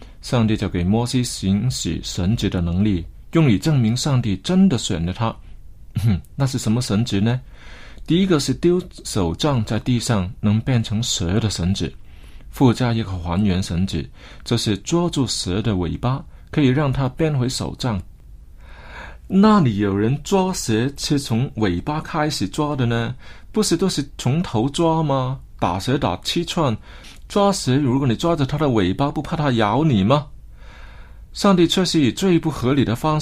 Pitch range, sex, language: 100-140 Hz, male, Chinese